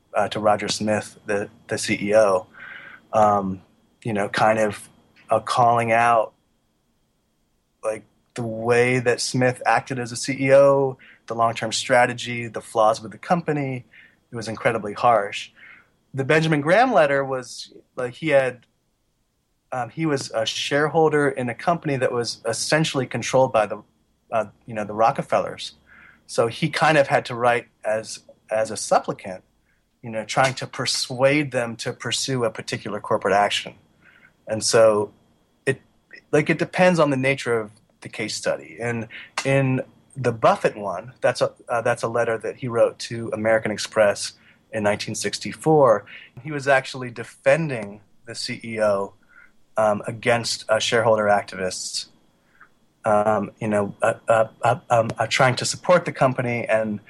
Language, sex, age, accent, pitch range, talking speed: English, male, 30-49, American, 110-130 Hz, 150 wpm